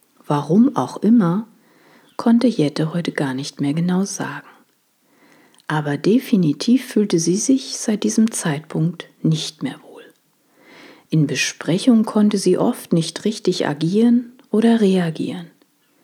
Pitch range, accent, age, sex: 160-245 Hz, German, 50-69, female